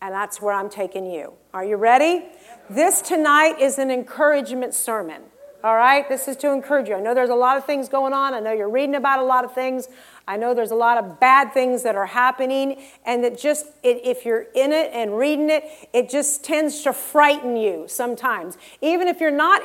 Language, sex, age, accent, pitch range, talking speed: English, female, 50-69, American, 245-300 Hz, 220 wpm